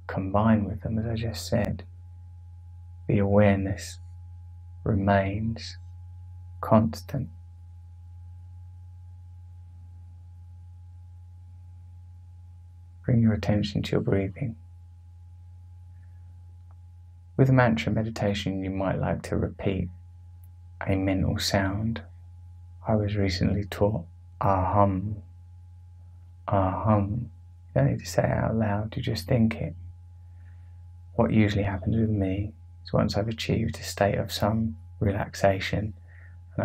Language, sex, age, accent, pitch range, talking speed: English, male, 20-39, British, 90-100 Hz, 100 wpm